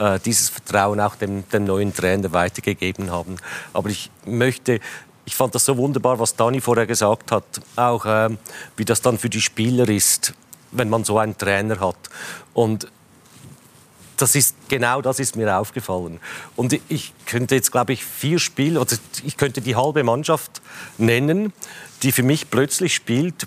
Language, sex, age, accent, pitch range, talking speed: German, male, 50-69, Swiss, 105-130 Hz, 170 wpm